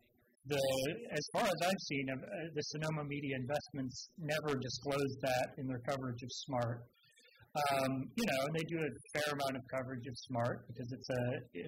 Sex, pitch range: male, 125-155 Hz